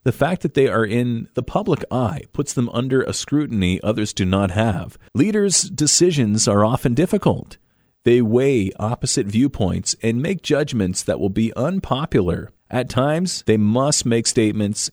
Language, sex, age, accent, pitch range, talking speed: English, male, 40-59, American, 105-145 Hz, 160 wpm